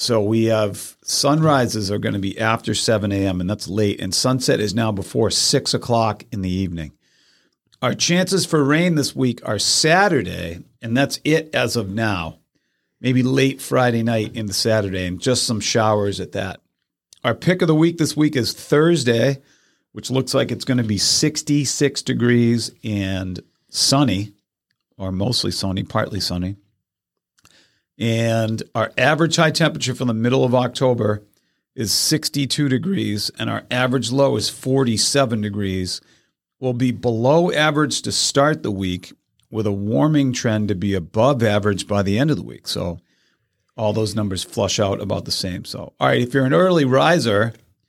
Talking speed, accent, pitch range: 170 wpm, American, 100-135 Hz